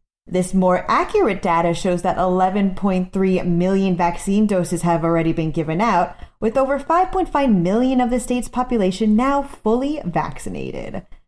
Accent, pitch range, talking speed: American, 180-260 Hz, 140 wpm